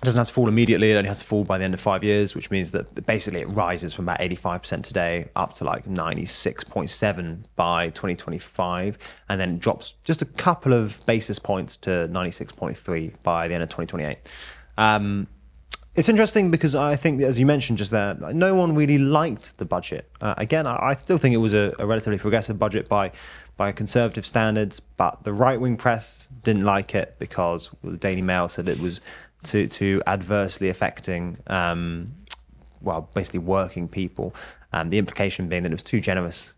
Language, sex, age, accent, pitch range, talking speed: English, male, 20-39, British, 90-115 Hz, 190 wpm